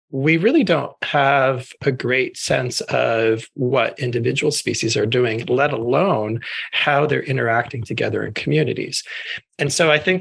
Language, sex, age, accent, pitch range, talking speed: English, male, 40-59, American, 115-150 Hz, 145 wpm